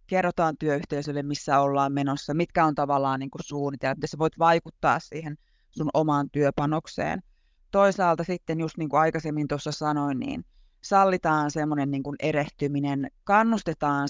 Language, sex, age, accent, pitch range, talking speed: Finnish, female, 20-39, native, 145-170 Hz, 130 wpm